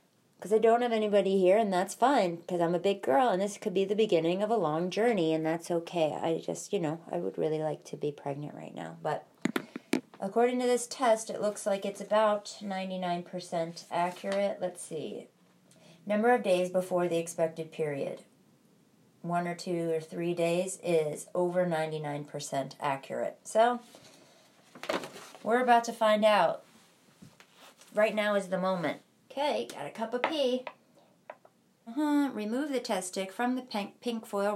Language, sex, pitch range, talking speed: English, female, 170-220 Hz, 170 wpm